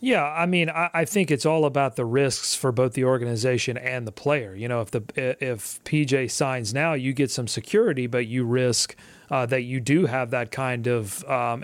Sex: male